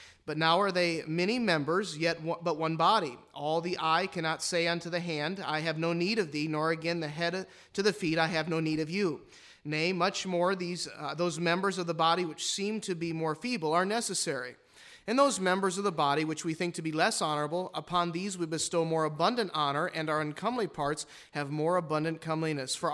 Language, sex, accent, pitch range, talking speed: English, male, American, 150-180 Hz, 220 wpm